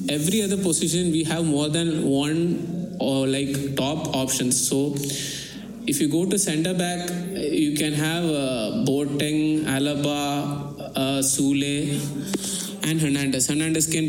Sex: male